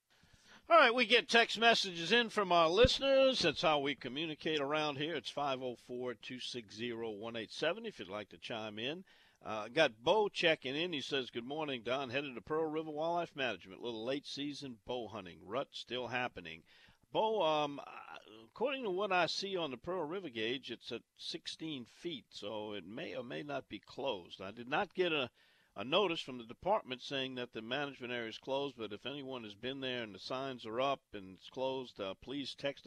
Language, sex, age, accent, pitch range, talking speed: English, male, 50-69, American, 115-155 Hz, 195 wpm